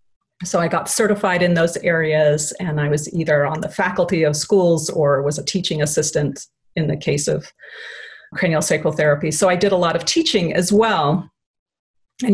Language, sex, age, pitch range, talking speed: English, female, 40-59, 175-230 Hz, 185 wpm